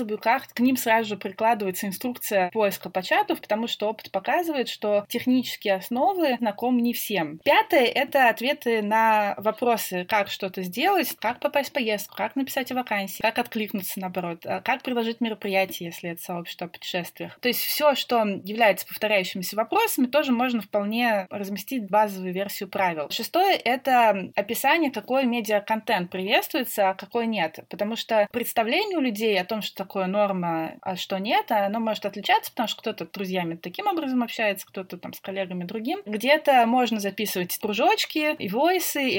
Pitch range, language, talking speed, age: 195-245 Hz, Russian, 160 wpm, 20-39